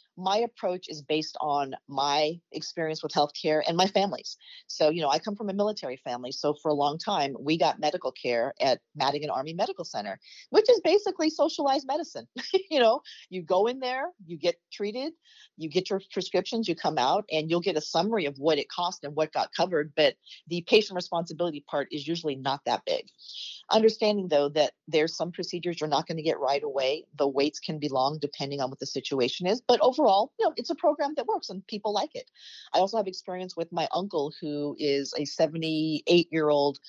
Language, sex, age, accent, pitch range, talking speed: English, female, 40-59, American, 150-200 Hz, 210 wpm